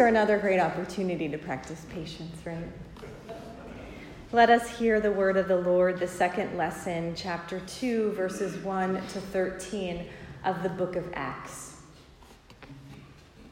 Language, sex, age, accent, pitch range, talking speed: English, female, 30-49, American, 175-225 Hz, 130 wpm